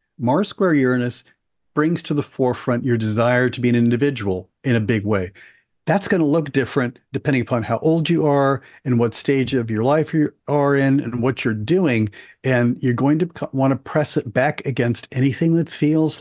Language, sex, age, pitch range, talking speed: English, male, 50-69, 120-140 Hz, 200 wpm